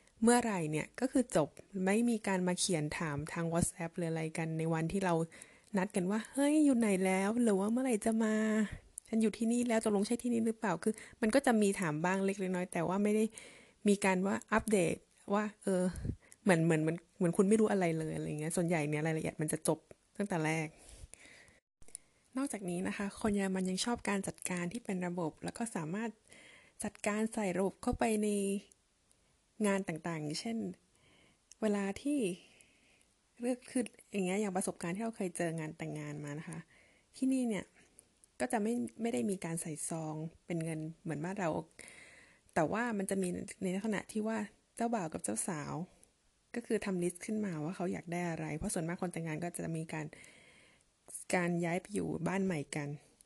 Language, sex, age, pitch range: German, female, 20-39, 170-220 Hz